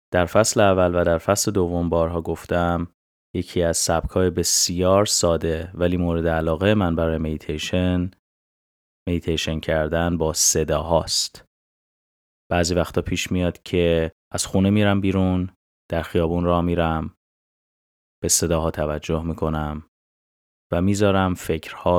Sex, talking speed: male, 120 wpm